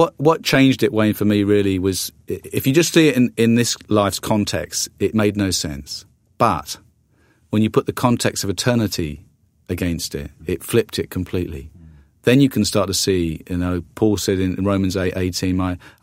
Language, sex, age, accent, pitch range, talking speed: English, male, 40-59, British, 95-120 Hz, 195 wpm